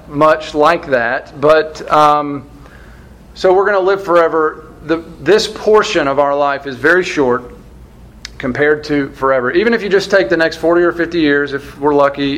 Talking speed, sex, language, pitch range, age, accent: 175 wpm, male, English, 135-170 Hz, 40-59, American